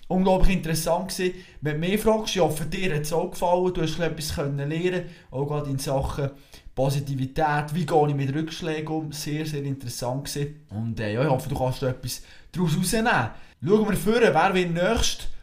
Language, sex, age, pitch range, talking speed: German, male, 20-39, 140-175 Hz, 185 wpm